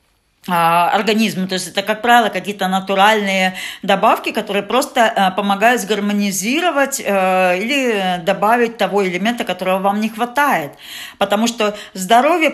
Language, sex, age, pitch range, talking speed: Russian, female, 40-59, 180-220 Hz, 115 wpm